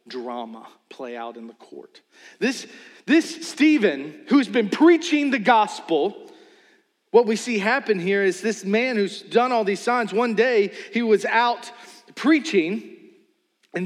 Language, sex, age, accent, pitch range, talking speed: English, male, 40-59, American, 200-305 Hz, 145 wpm